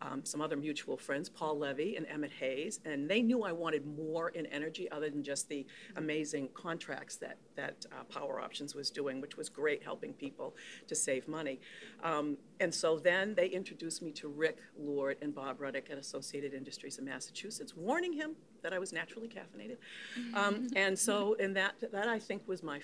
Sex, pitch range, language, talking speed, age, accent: female, 145-185 Hz, English, 195 wpm, 50-69, American